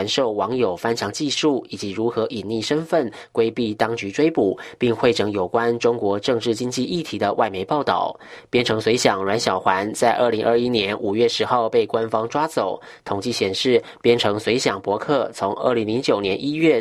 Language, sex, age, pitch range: English, male, 20-39, 105-130 Hz